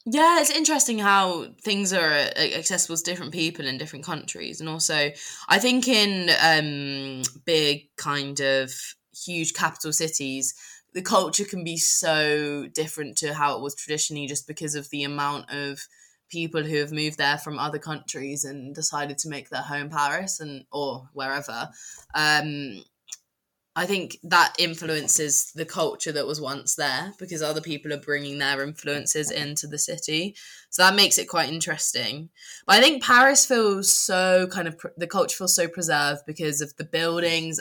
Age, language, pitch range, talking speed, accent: 10-29, English, 145-175 Hz, 165 wpm, British